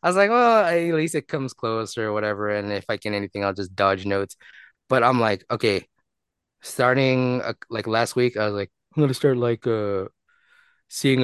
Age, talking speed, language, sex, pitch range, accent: 20-39, 210 wpm, English, male, 105-135 Hz, American